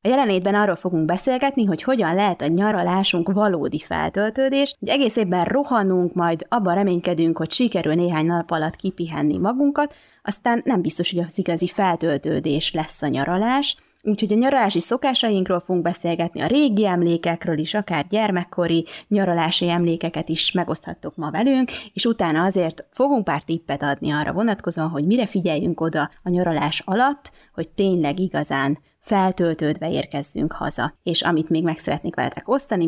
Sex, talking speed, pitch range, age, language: female, 150 wpm, 165-215 Hz, 20-39, Hungarian